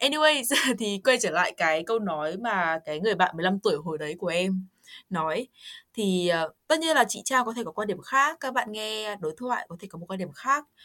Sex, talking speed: female, 245 wpm